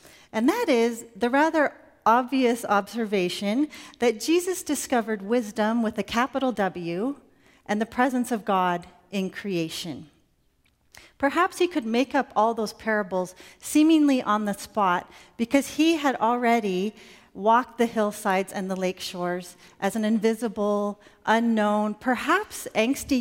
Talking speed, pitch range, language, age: 130 wpm, 205-275 Hz, English, 40-59